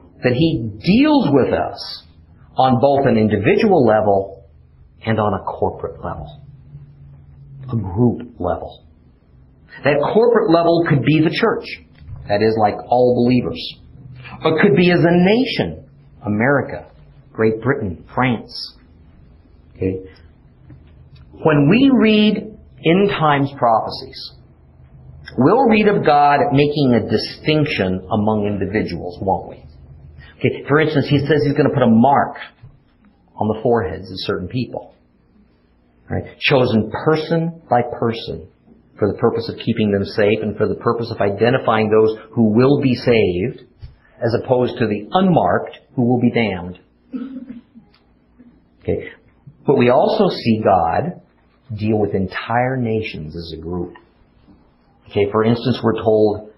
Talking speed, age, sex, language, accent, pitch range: 130 wpm, 50-69, male, English, American, 95-145 Hz